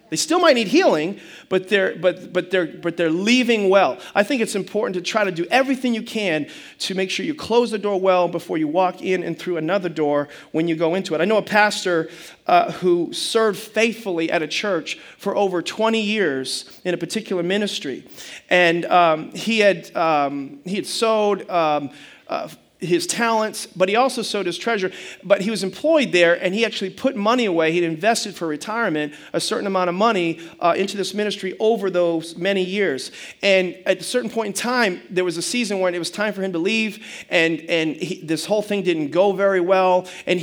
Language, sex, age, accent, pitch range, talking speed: English, male, 40-59, American, 170-215 Hz, 210 wpm